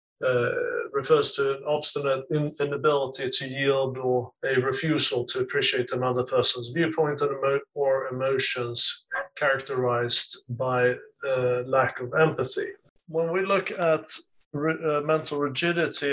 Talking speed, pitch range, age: 120 wpm, 125-145 Hz, 30-49